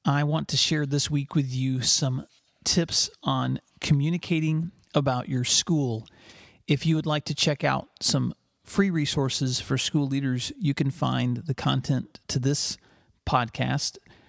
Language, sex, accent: English, male, American